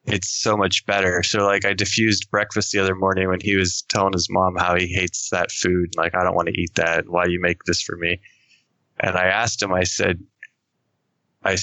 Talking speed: 225 wpm